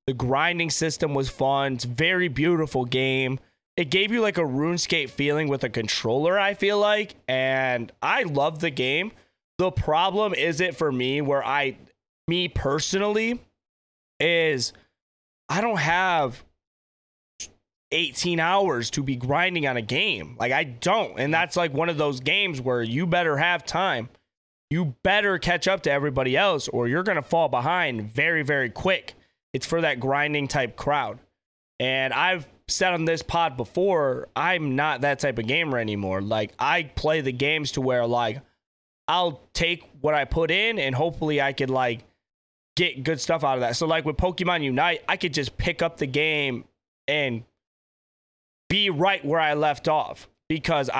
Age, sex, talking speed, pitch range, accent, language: 20-39, male, 170 wpm, 125-165 Hz, American, English